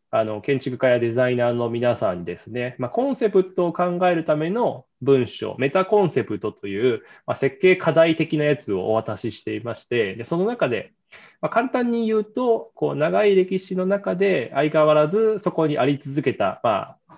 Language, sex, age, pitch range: Japanese, male, 20-39, 110-160 Hz